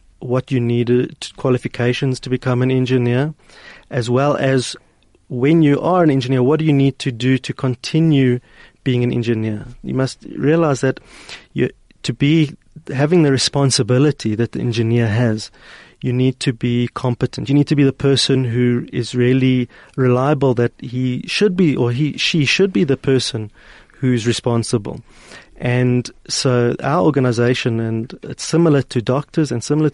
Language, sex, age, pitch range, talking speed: English, male, 30-49, 120-140 Hz, 160 wpm